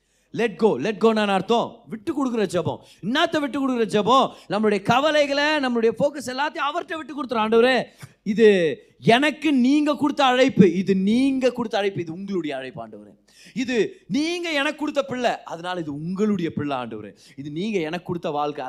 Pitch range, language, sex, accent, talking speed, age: 130-220 Hz, Tamil, male, native, 120 wpm, 30-49